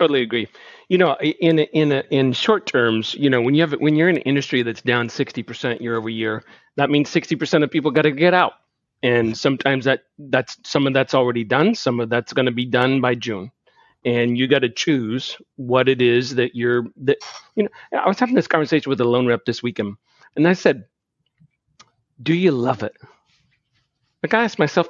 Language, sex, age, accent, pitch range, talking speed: English, male, 40-59, American, 125-155 Hz, 215 wpm